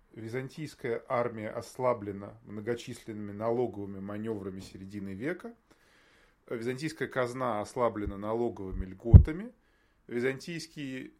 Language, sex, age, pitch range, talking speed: Russian, male, 20-39, 105-140 Hz, 75 wpm